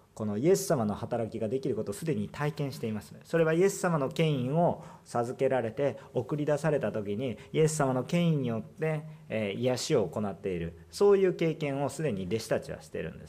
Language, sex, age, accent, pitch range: Japanese, male, 40-59, native, 110-150 Hz